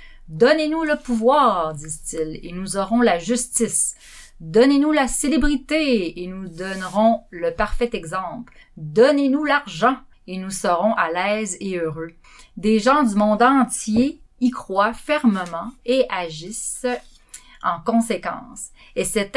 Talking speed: 135 wpm